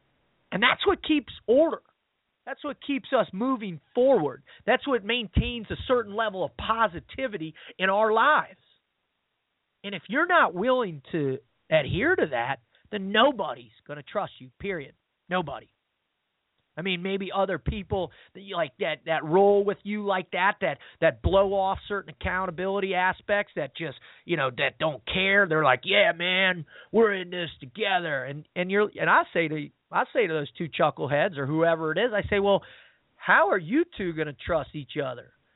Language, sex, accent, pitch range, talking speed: English, male, American, 160-220 Hz, 175 wpm